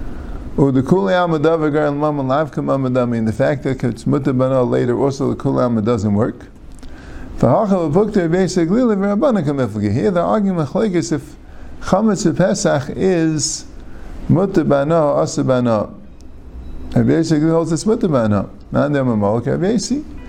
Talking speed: 70 wpm